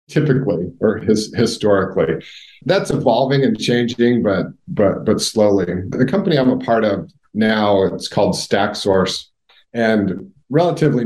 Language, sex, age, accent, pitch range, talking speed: English, male, 50-69, American, 100-125 Hz, 130 wpm